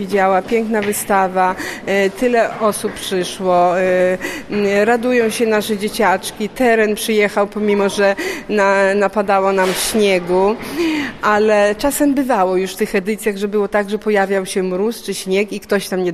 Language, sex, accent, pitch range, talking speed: Polish, female, native, 190-220 Hz, 140 wpm